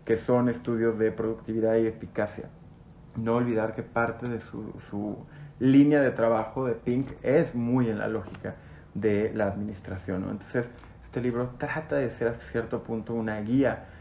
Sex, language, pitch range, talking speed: male, Spanish, 105-120 Hz, 165 wpm